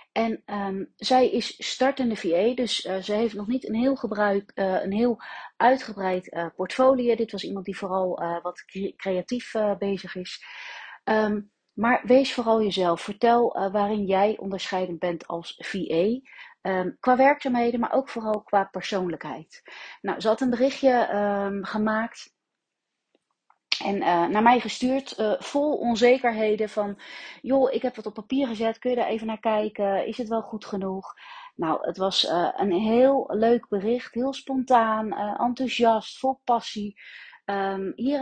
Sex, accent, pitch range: female, Dutch, 195-240 Hz